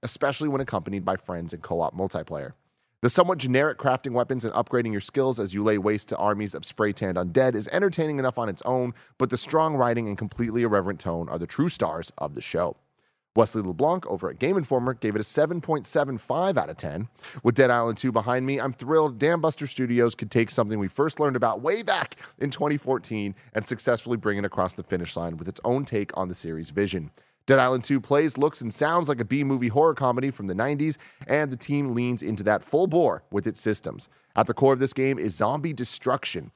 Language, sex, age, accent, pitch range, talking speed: English, male, 30-49, American, 100-135 Hz, 220 wpm